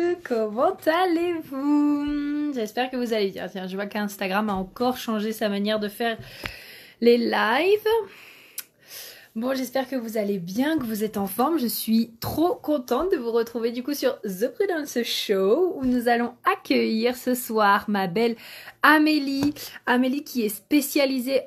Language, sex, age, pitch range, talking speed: French, female, 20-39, 215-270 Hz, 160 wpm